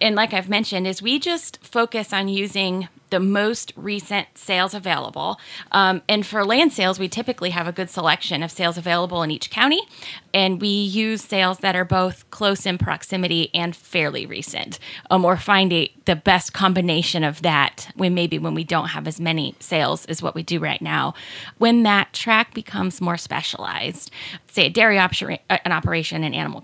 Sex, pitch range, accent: female, 165-200 Hz, American